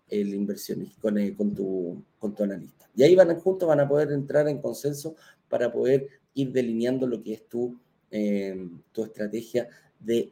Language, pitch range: Spanish, 125-190 Hz